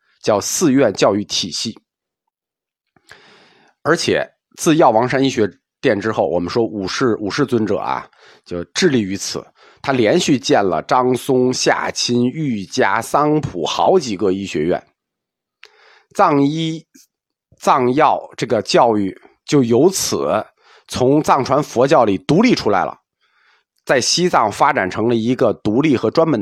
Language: Chinese